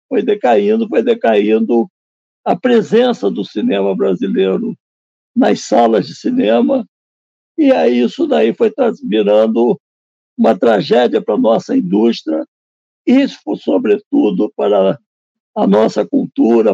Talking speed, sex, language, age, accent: 110 wpm, male, Portuguese, 60-79, Brazilian